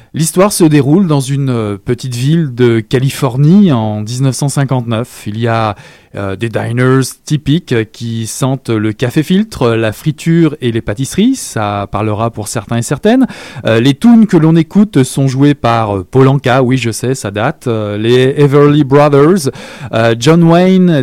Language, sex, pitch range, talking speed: French, male, 115-160 Hz, 165 wpm